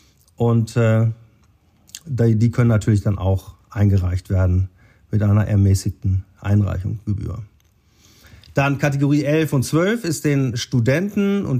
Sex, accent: male, German